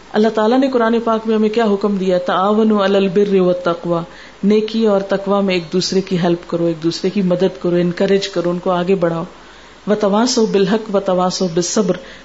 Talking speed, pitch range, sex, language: 160 wpm, 195-245 Hz, female, Urdu